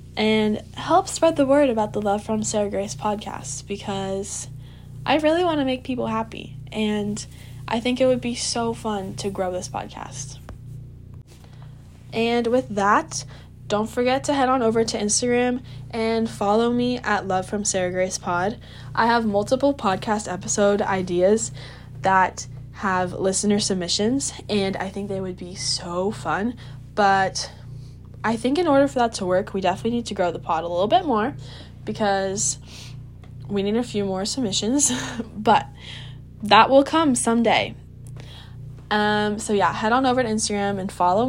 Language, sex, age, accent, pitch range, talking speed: English, female, 10-29, American, 180-225 Hz, 165 wpm